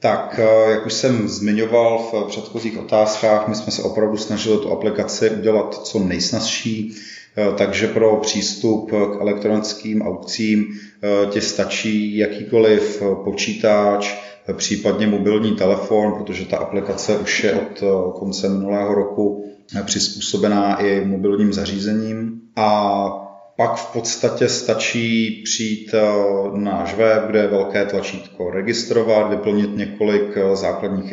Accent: native